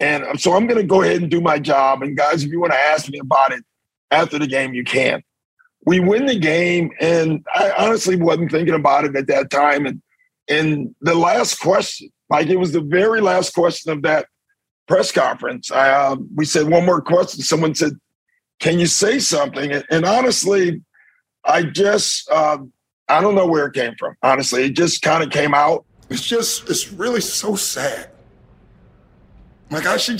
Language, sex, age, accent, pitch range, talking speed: English, male, 50-69, American, 130-180 Hz, 195 wpm